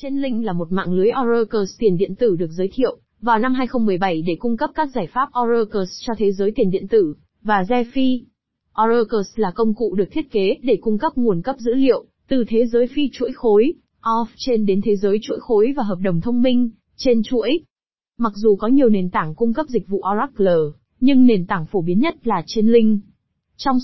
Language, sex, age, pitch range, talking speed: Vietnamese, female, 20-39, 200-250 Hz, 210 wpm